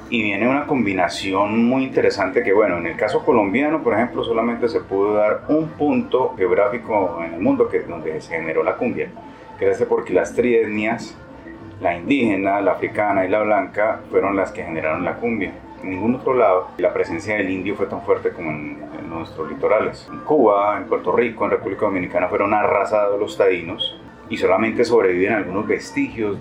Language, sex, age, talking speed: Spanish, male, 30-49, 180 wpm